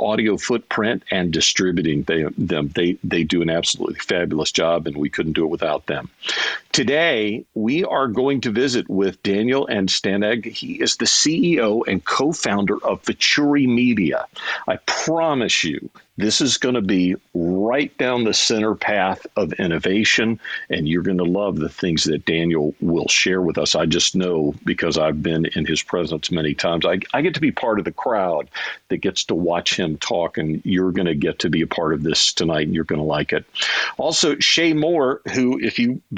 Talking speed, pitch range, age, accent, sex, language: 195 wpm, 85-120 Hz, 50-69, American, male, English